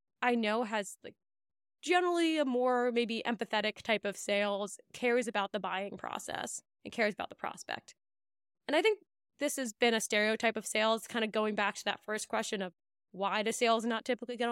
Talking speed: 190 wpm